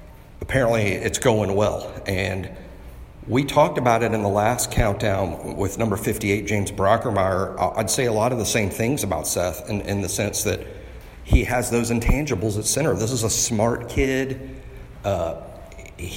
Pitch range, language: 100-120 Hz, English